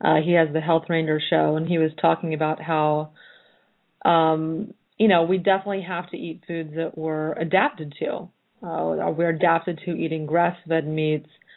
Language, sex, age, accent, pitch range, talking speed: English, female, 30-49, American, 160-180 Hz, 170 wpm